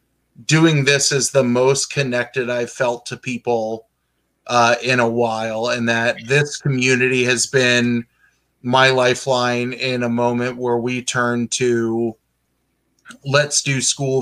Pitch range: 120-135 Hz